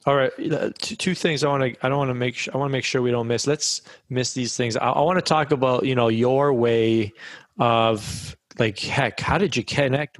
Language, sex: English, male